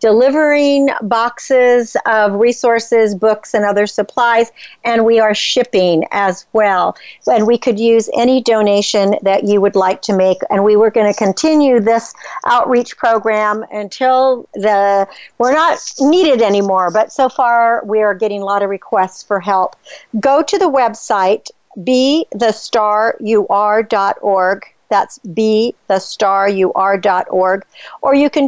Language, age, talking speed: English, 50-69, 145 wpm